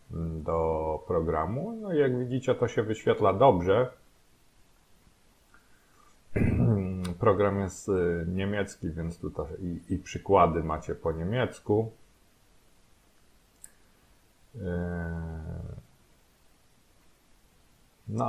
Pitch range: 85-100 Hz